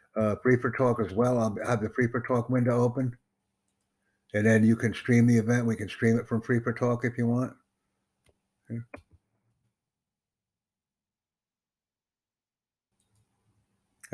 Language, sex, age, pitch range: English, male, 60-79, 105-125 Hz